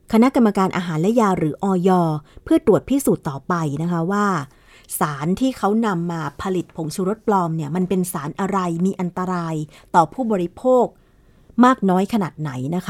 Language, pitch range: Thai, 170-220 Hz